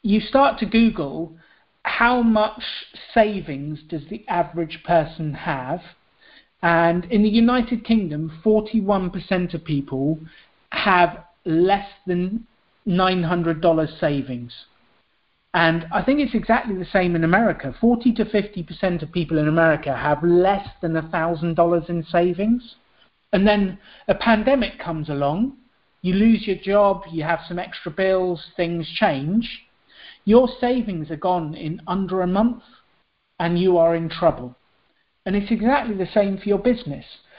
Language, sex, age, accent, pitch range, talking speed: English, male, 40-59, British, 170-225 Hz, 135 wpm